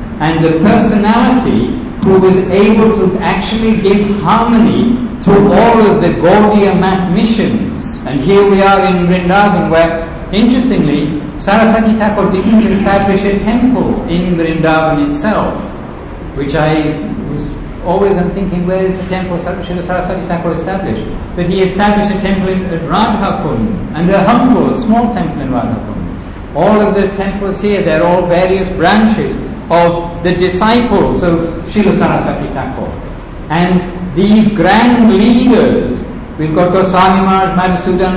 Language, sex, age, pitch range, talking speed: English, male, 60-79, 175-210 Hz, 140 wpm